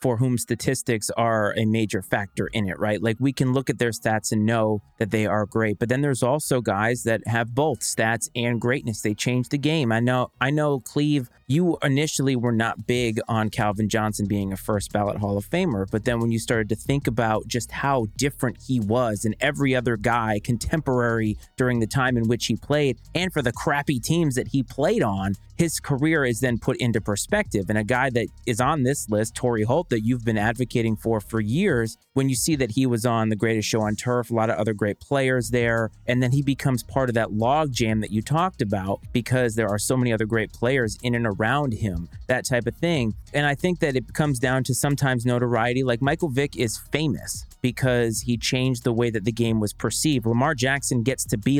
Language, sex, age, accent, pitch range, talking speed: English, male, 30-49, American, 110-135 Hz, 225 wpm